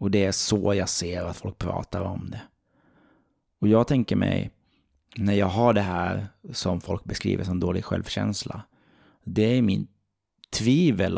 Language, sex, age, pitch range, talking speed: Swedish, male, 30-49, 95-110 Hz, 160 wpm